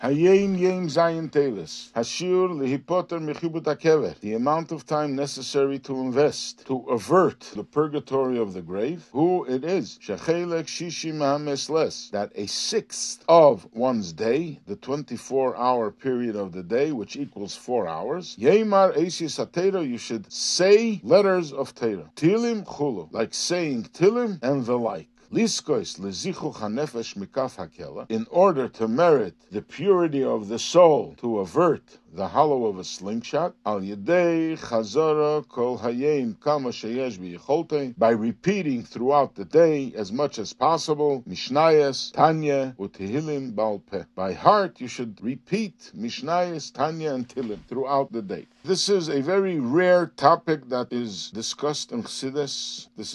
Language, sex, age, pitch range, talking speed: English, male, 50-69, 120-175 Hz, 105 wpm